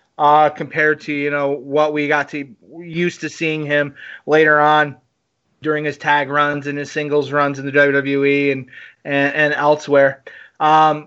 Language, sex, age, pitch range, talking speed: English, male, 30-49, 145-160 Hz, 170 wpm